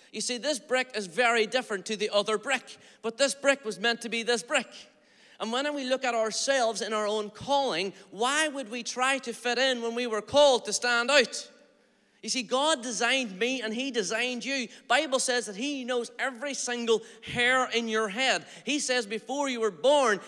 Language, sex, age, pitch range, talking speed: English, male, 30-49, 210-255 Hz, 210 wpm